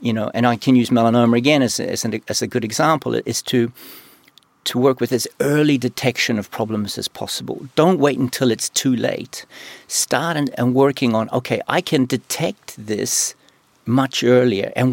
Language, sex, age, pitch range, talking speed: Swedish, male, 50-69, 115-130 Hz, 180 wpm